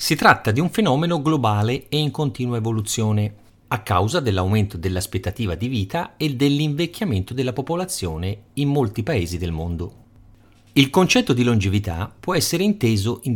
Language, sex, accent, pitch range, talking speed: Italian, male, native, 100-150 Hz, 150 wpm